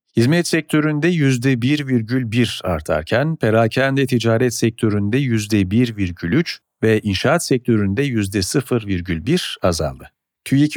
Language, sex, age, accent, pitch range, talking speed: Turkish, male, 50-69, native, 110-145 Hz, 80 wpm